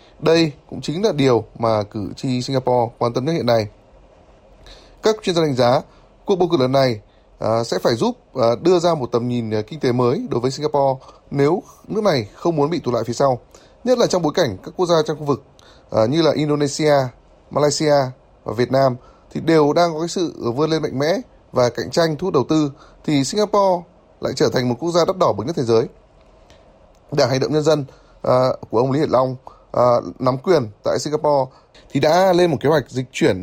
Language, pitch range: Vietnamese, 120-165 Hz